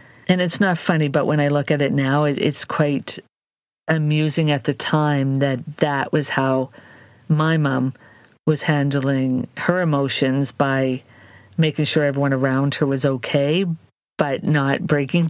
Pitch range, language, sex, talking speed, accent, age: 140-170 Hz, English, female, 150 wpm, American, 50-69